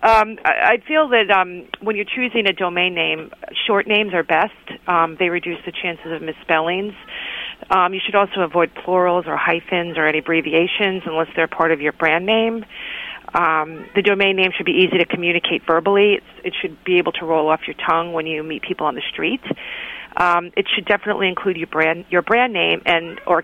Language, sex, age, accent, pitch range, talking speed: English, female, 40-59, American, 165-200 Hz, 195 wpm